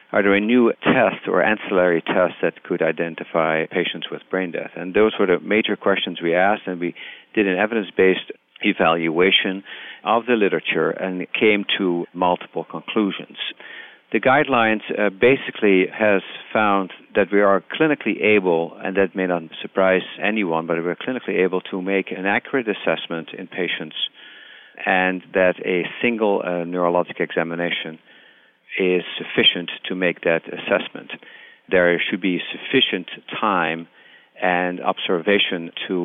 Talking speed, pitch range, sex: 140 wpm, 85-100 Hz, male